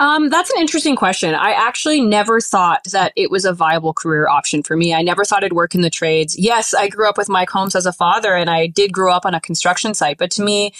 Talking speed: 265 wpm